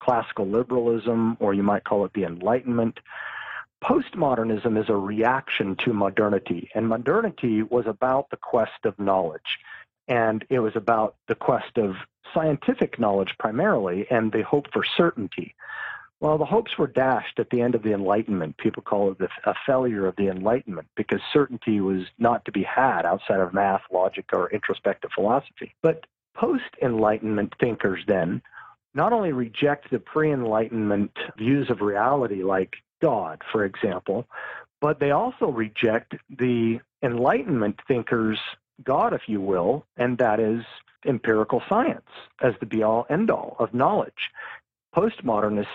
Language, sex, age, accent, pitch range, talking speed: English, male, 40-59, American, 110-145 Hz, 150 wpm